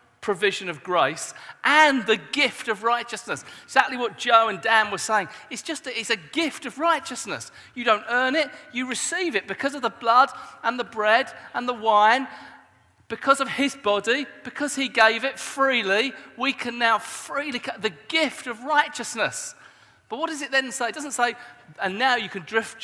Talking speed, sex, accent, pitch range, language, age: 185 wpm, male, British, 195-260 Hz, English, 40-59